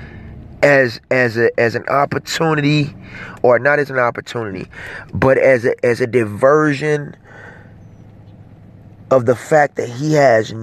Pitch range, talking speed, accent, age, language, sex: 115-150 Hz, 130 wpm, American, 30-49, English, male